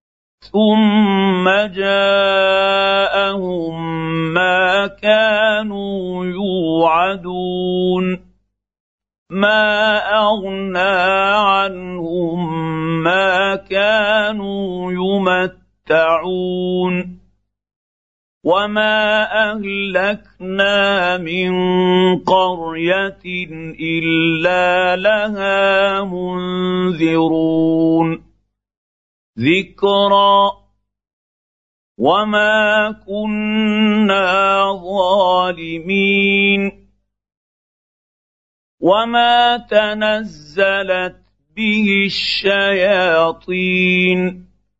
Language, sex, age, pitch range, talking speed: Arabic, male, 50-69, 175-200 Hz, 35 wpm